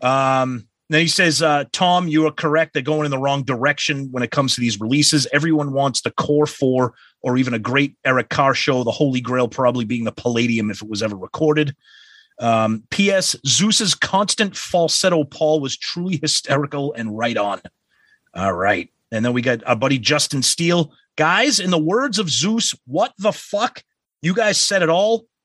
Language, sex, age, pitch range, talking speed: English, male, 30-49, 125-170 Hz, 190 wpm